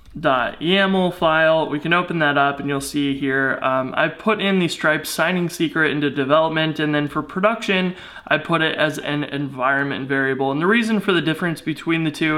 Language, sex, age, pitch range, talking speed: English, male, 20-39, 145-170 Hz, 200 wpm